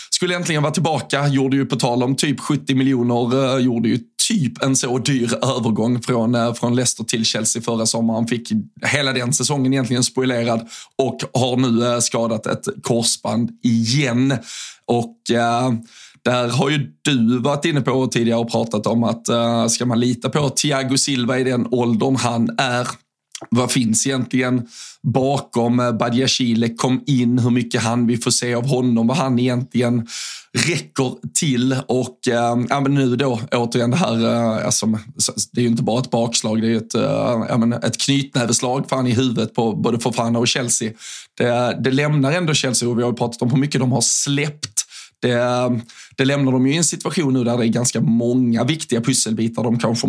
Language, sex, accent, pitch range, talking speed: Swedish, male, native, 120-135 Hz, 185 wpm